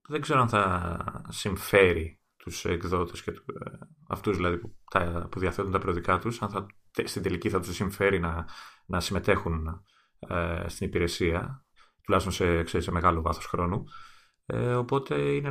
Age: 30-49